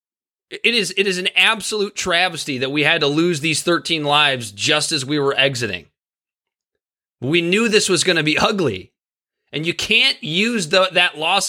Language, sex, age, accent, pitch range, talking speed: English, male, 20-39, American, 145-200 Hz, 185 wpm